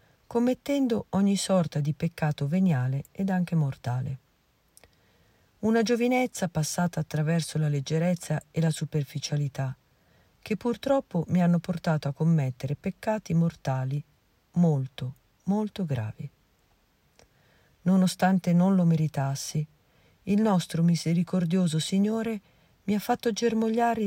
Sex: female